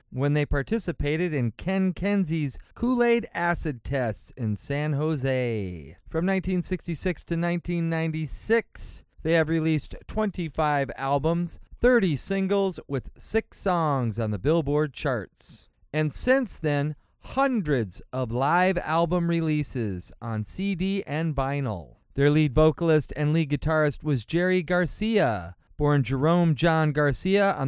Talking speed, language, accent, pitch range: 120 wpm, English, American, 135-175 Hz